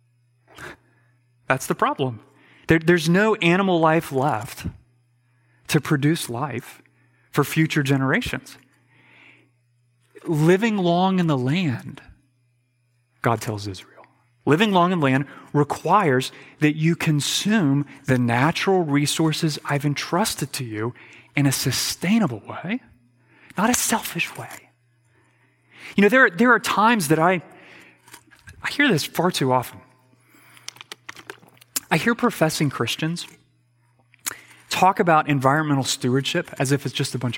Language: English